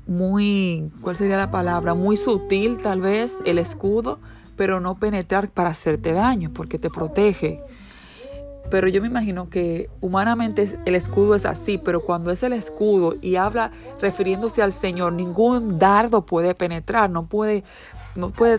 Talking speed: 150 wpm